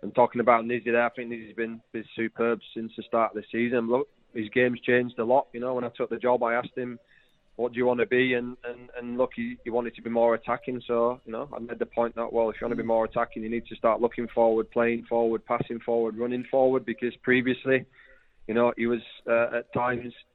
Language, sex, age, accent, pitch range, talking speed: English, male, 20-39, British, 115-125 Hz, 255 wpm